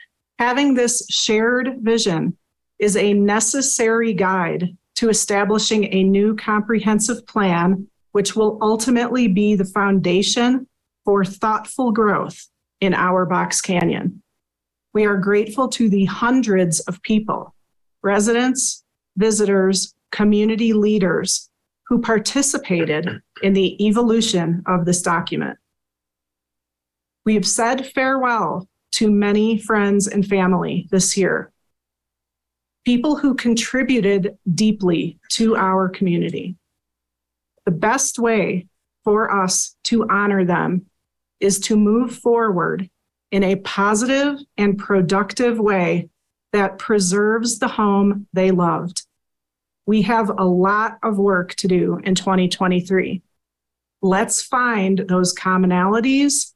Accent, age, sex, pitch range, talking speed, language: American, 40-59, female, 185-225 Hz, 110 wpm, English